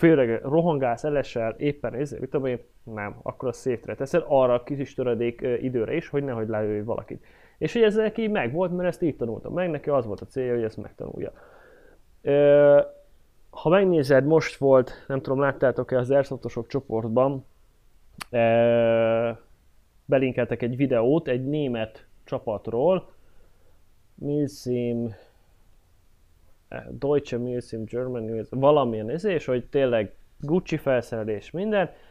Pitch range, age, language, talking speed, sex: 115-155 Hz, 20-39, Hungarian, 130 wpm, male